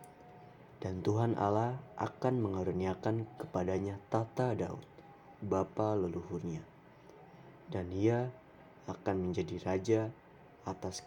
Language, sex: Indonesian, male